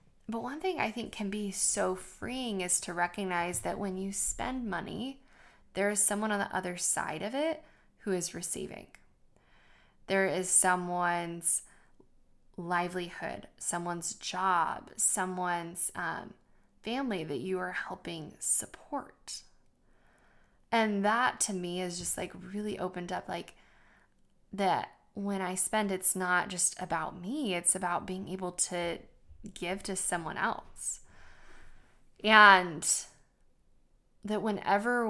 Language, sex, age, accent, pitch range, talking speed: English, female, 10-29, American, 180-210 Hz, 130 wpm